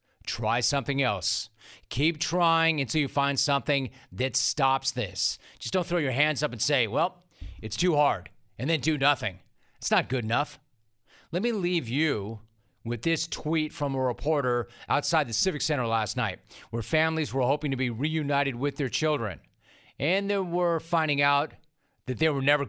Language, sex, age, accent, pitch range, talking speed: English, male, 40-59, American, 110-140 Hz, 175 wpm